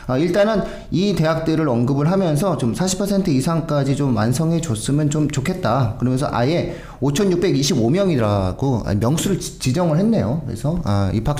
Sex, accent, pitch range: male, native, 115-165 Hz